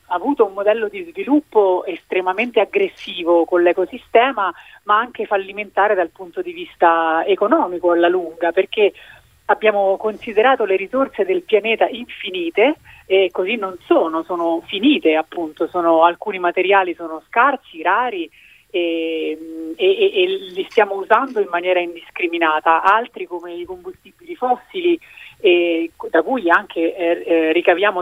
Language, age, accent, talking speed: Italian, 30-49, native, 125 wpm